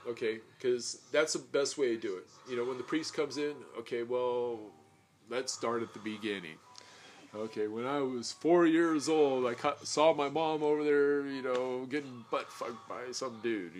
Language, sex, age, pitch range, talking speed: English, male, 30-49, 115-150 Hz, 185 wpm